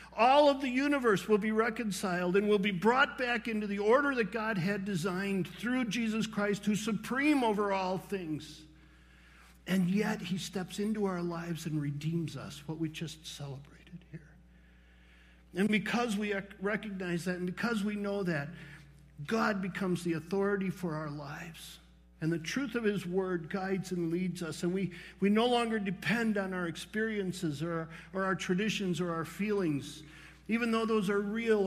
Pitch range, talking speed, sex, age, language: 165-215 Hz, 170 wpm, male, 50-69, English